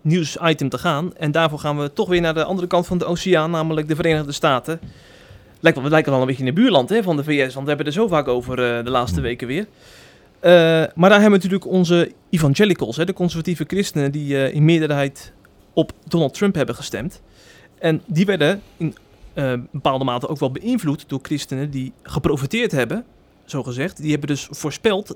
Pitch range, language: 135-180 Hz, Dutch